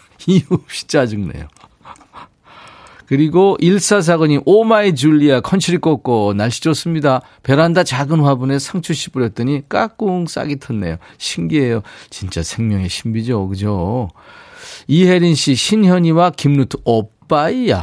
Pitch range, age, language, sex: 105-165 Hz, 40-59, Korean, male